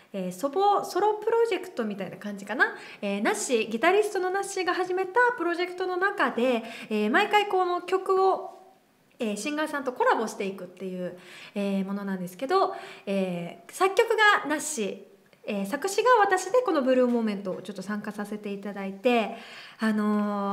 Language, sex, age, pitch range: Japanese, female, 20-39, 205-340 Hz